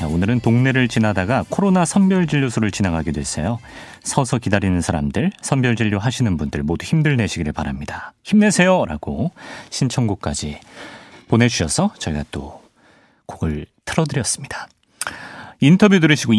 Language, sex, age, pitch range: Korean, male, 40-59, 90-130 Hz